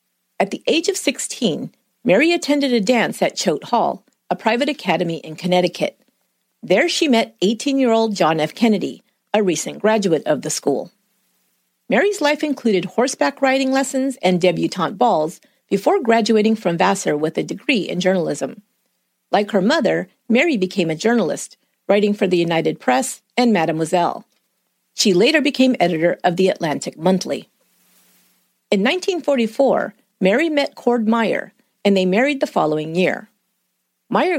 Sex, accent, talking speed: female, American, 150 wpm